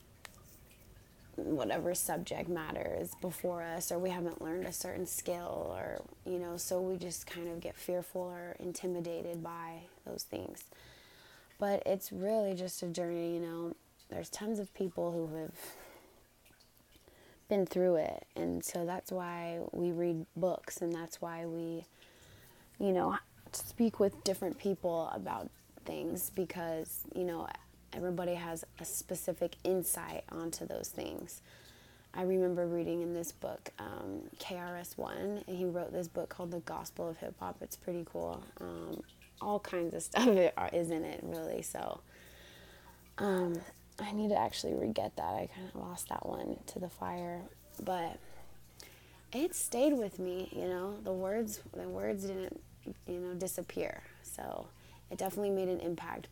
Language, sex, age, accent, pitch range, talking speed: English, female, 20-39, American, 165-185 Hz, 150 wpm